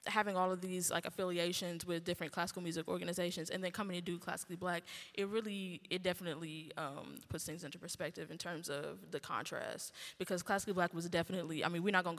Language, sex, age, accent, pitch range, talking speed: English, female, 10-29, American, 165-190 Hz, 205 wpm